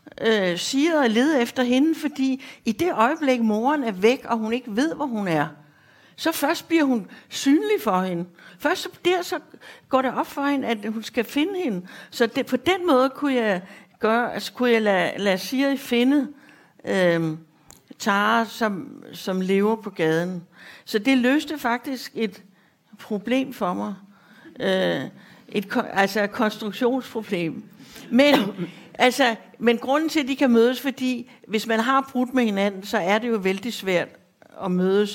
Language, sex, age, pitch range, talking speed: English, female, 60-79, 195-255 Hz, 170 wpm